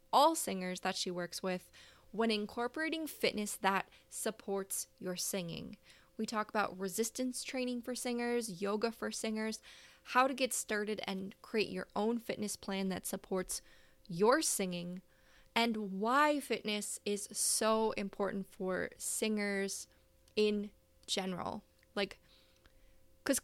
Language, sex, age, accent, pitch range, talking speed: English, female, 10-29, American, 190-225 Hz, 125 wpm